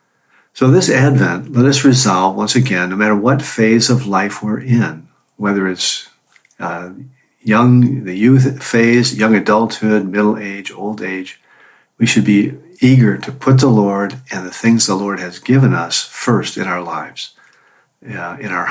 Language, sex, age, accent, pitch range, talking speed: English, male, 50-69, American, 95-115 Hz, 165 wpm